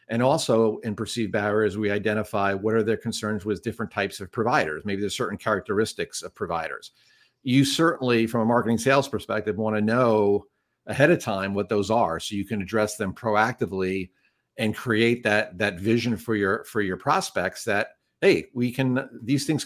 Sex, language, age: male, English, 50-69